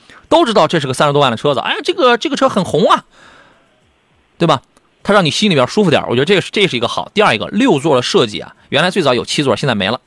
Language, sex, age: Chinese, male, 30-49